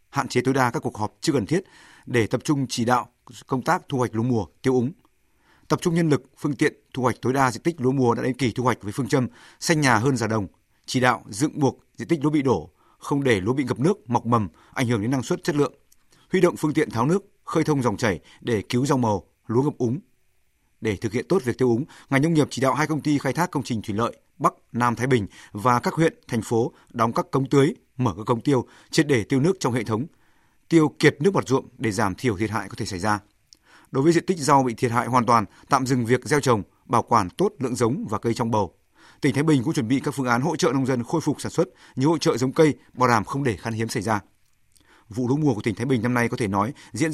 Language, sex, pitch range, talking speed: Vietnamese, male, 115-145 Hz, 275 wpm